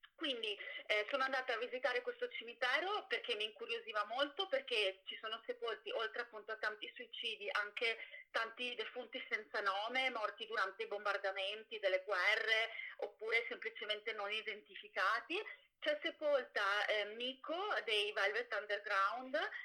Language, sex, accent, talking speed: Italian, female, native, 130 wpm